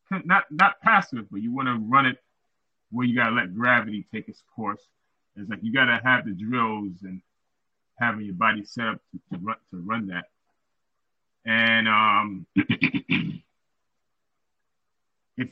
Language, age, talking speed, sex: English, 30-49, 145 wpm, male